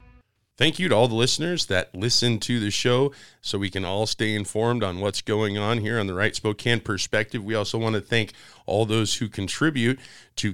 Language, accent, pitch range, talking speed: English, American, 100-120 Hz, 210 wpm